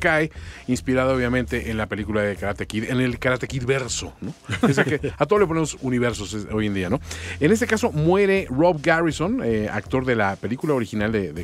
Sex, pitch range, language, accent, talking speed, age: male, 110-150 Hz, English, Mexican, 210 wpm, 40-59